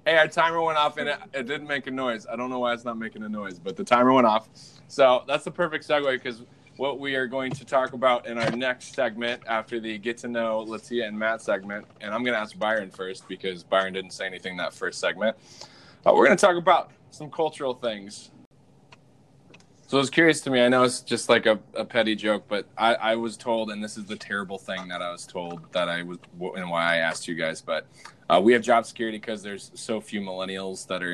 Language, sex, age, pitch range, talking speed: English, male, 20-39, 95-125 Hz, 250 wpm